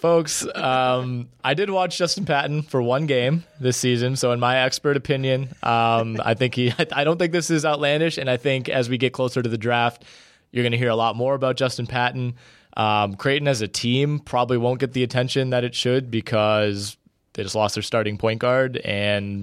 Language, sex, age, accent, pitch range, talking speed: English, male, 20-39, American, 105-130 Hz, 210 wpm